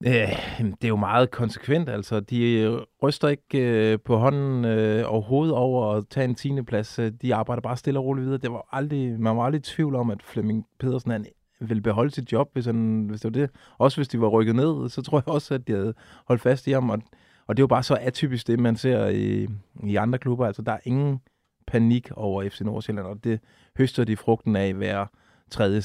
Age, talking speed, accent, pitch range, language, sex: 30-49, 225 wpm, native, 105-130 Hz, Danish, male